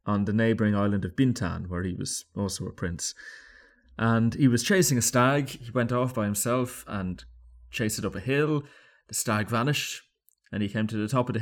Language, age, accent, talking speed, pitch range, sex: English, 30-49, British, 210 wpm, 95-120 Hz, male